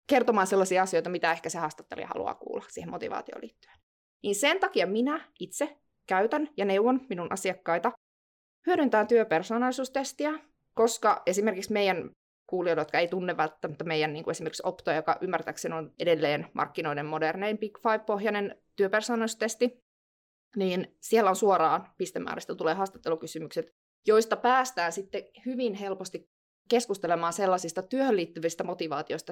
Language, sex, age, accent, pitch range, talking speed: Finnish, female, 20-39, native, 175-245 Hz, 130 wpm